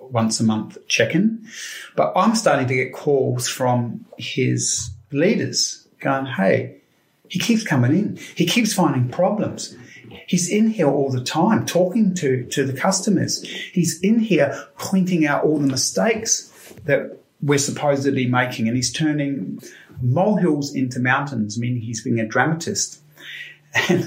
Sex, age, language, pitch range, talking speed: male, 30-49, English, 115-155 Hz, 145 wpm